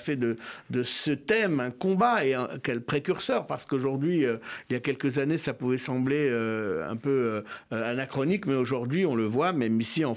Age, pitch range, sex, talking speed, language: 60-79, 130-160 Hz, male, 205 wpm, French